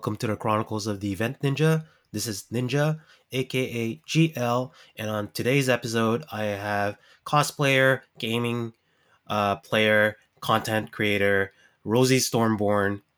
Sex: male